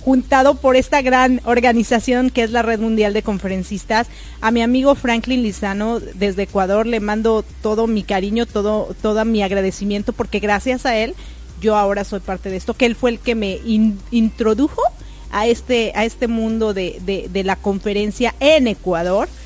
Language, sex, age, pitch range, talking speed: Spanish, female, 30-49, 210-255 Hz, 170 wpm